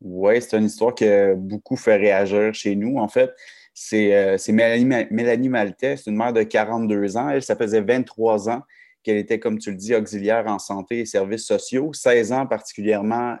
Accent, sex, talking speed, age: Canadian, male, 195 wpm, 30-49